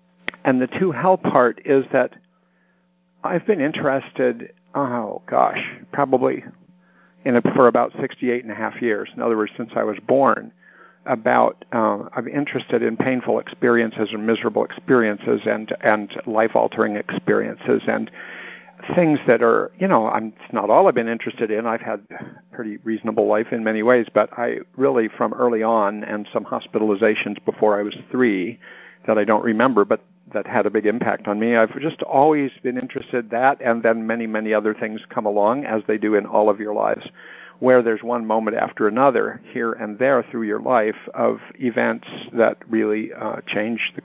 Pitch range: 110-135 Hz